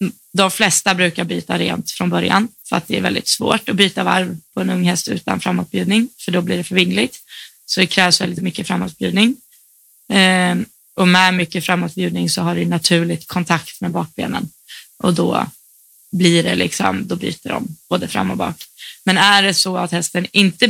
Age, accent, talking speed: 20-39, native, 185 wpm